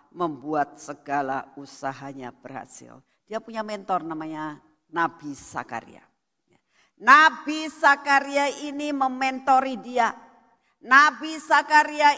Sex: female